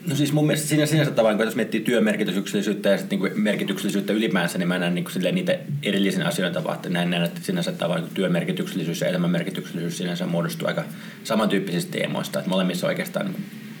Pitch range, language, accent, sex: 165-195 Hz, Finnish, native, male